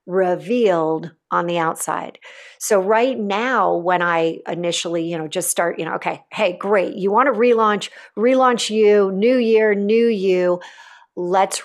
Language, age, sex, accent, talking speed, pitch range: English, 40-59, female, American, 155 wpm, 175-230 Hz